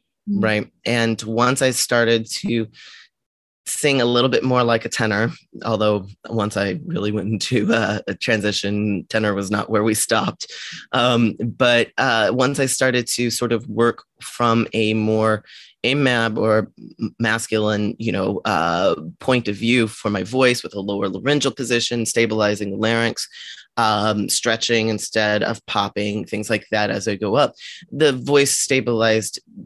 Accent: American